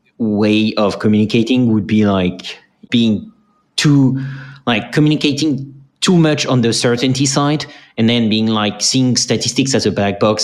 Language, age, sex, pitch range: English, 30-49, male, 100-125 Hz